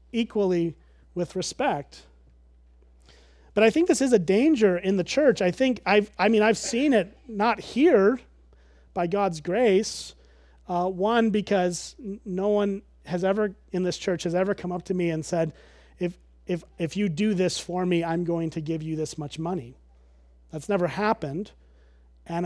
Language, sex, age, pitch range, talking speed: English, male, 30-49, 155-200 Hz, 170 wpm